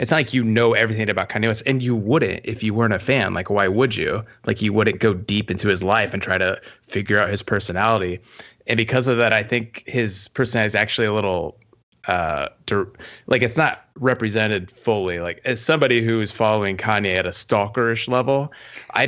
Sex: male